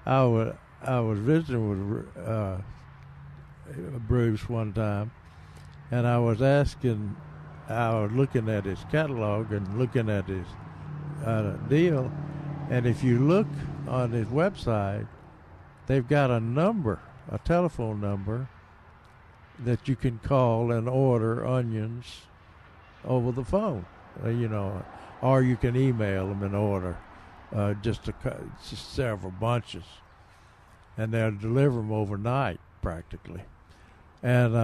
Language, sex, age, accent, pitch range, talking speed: English, male, 60-79, American, 100-135 Hz, 120 wpm